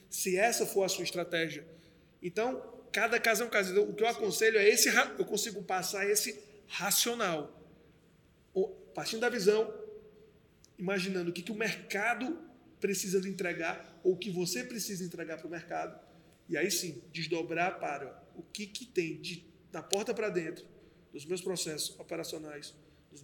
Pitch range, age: 165-205 Hz, 20-39